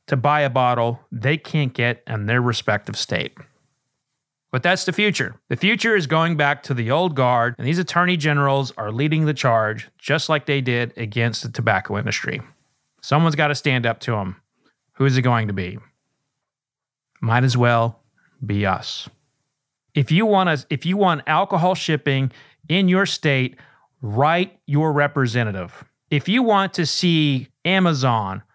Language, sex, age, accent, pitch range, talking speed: English, male, 30-49, American, 125-175 Hz, 160 wpm